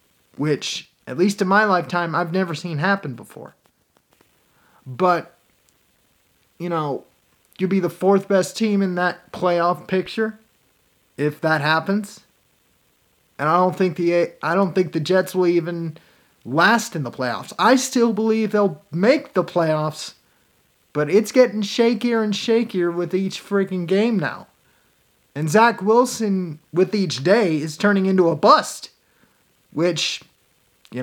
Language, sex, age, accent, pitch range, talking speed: English, male, 30-49, American, 160-200 Hz, 145 wpm